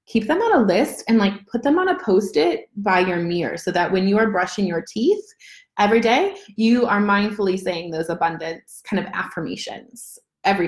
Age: 20-39